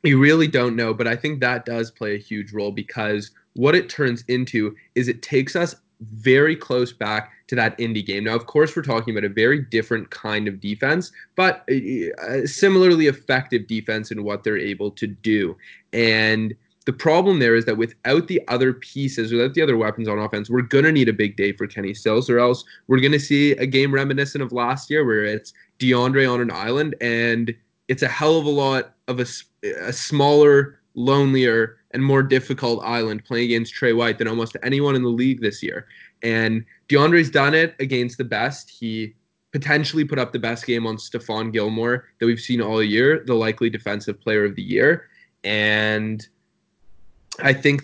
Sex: male